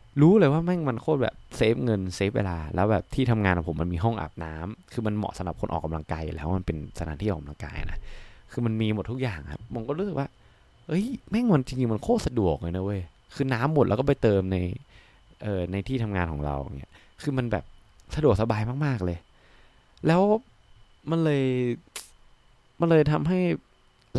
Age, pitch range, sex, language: 20-39, 95-130 Hz, male, Thai